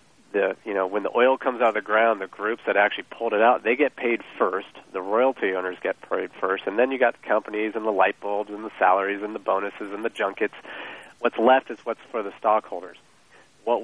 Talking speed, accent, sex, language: 240 wpm, American, male, English